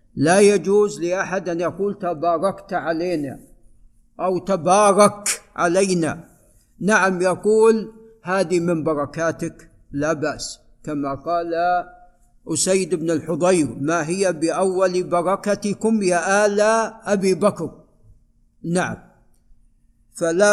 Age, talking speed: 50-69, 95 wpm